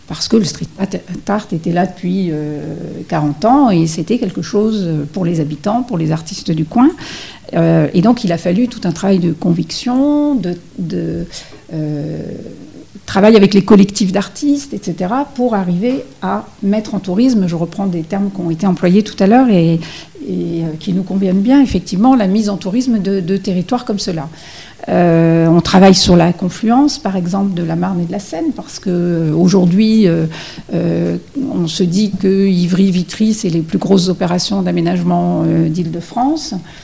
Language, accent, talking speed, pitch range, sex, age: French, French, 175 wpm, 165-205 Hz, female, 50-69